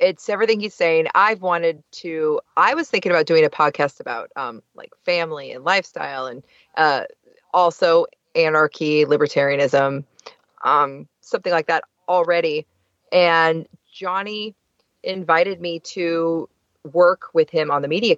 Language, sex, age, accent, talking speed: English, female, 30-49, American, 135 wpm